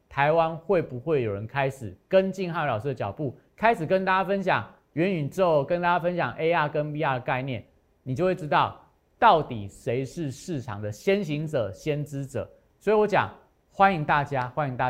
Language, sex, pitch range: Chinese, male, 130-180 Hz